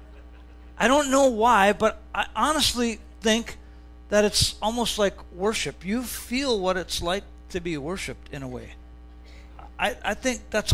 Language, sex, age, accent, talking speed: English, male, 50-69, American, 155 wpm